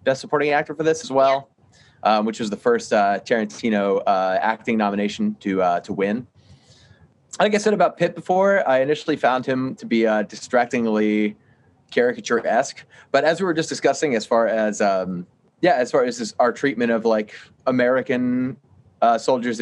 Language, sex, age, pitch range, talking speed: English, male, 30-49, 105-150 Hz, 185 wpm